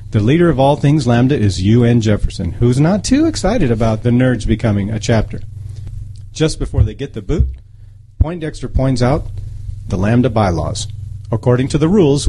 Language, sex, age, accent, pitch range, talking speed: English, male, 40-59, American, 105-125 Hz, 170 wpm